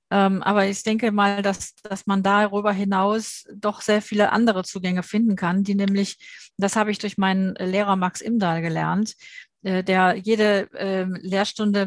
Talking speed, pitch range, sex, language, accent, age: 150 wpm, 190-220 Hz, female, German, German, 50-69